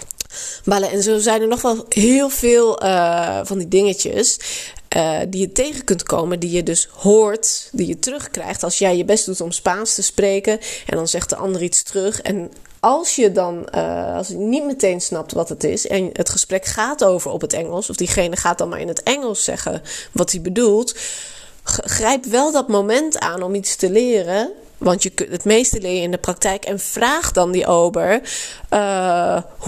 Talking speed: 200 wpm